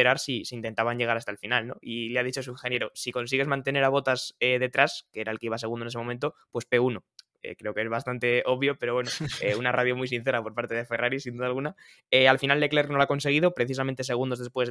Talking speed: 260 wpm